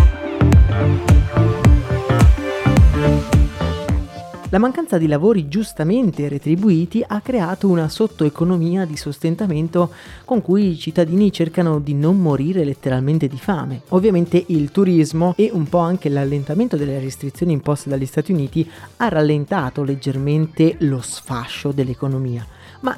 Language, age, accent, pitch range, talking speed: Italian, 30-49, native, 135-170 Hz, 115 wpm